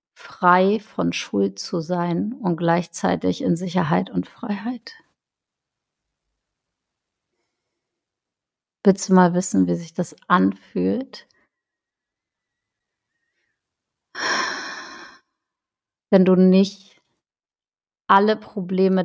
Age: 50-69